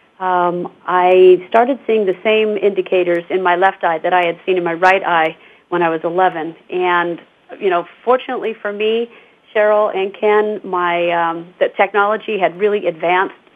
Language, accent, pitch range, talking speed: English, American, 175-195 Hz, 175 wpm